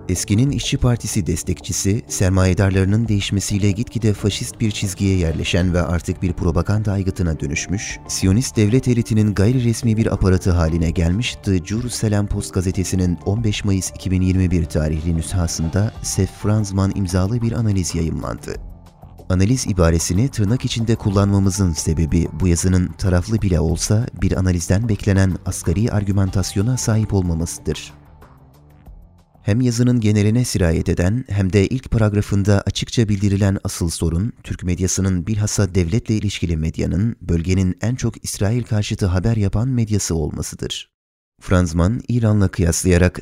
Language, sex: Turkish, male